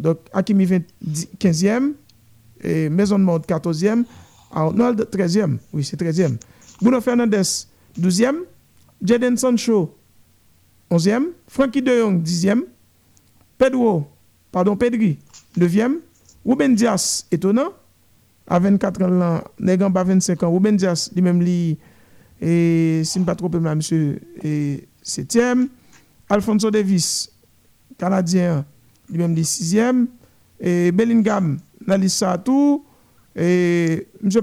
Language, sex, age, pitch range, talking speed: French, male, 50-69, 175-225 Hz, 110 wpm